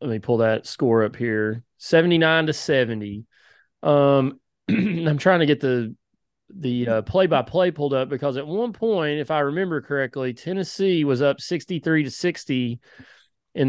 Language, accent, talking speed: English, American, 160 wpm